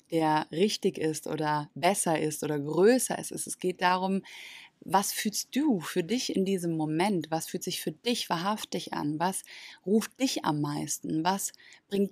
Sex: female